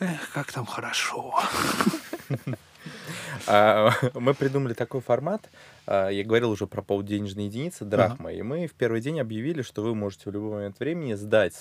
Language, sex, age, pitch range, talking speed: Russian, male, 20-39, 95-120 Hz, 150 wpm